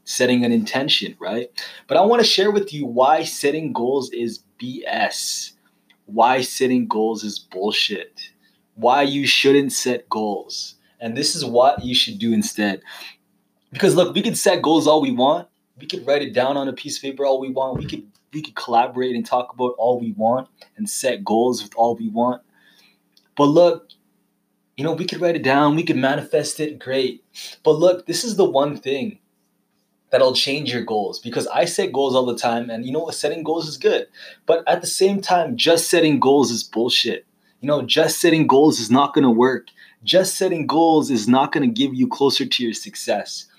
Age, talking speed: 20-39, 200 wpm